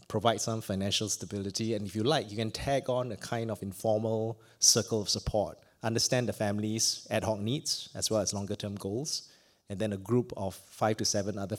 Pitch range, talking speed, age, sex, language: 100-120 Hz, 200 wpm, 20-39, male, English